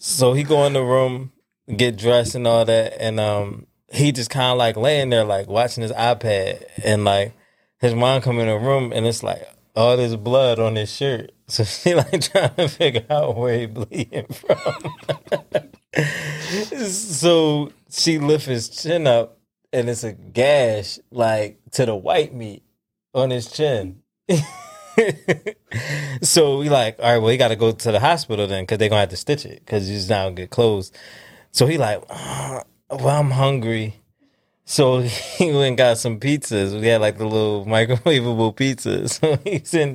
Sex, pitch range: male, 105-140 Hz